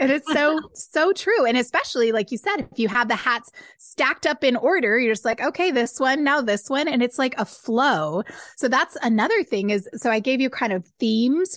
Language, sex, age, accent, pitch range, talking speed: English, female, 20-39, American, 185-260 Hz, 235 wpm